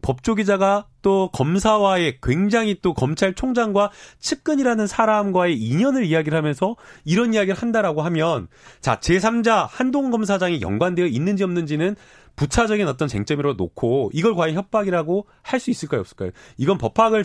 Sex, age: male, 30-49